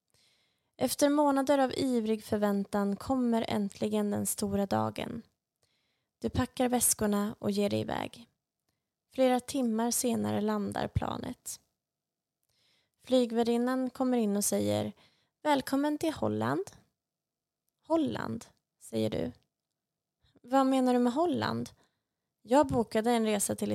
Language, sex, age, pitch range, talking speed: Swedish, female, 20-39, 200-250 Hz, 110 wpm